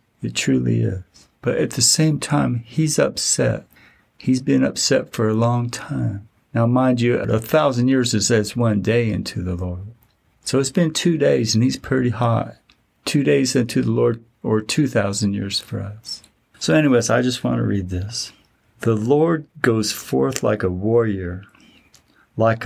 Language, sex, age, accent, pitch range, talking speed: English, male, 50-69, American, 105-130 Hz, 170 wpm